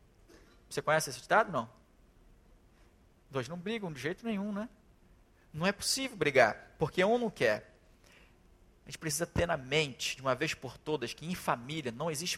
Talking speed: 175 wpm